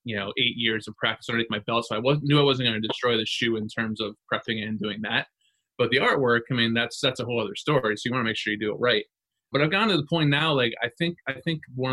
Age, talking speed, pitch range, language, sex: 20-39, 300 wpm, 110-135 Hz, English, male